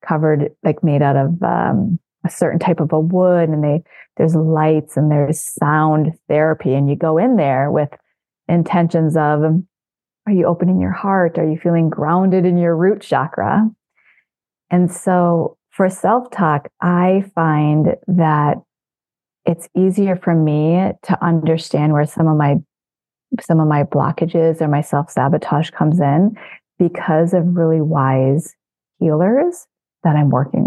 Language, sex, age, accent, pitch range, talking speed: English, female, 30-49, American, 150-180 Hz, 145 wpm